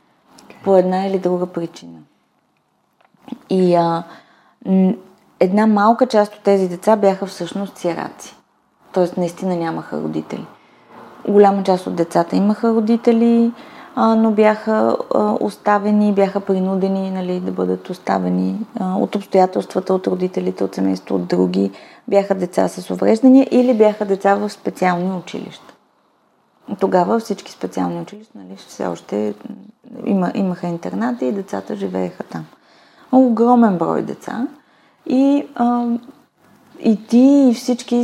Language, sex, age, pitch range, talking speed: Bulgarian, female, 30-49, 175-230 Hz, 125 wpm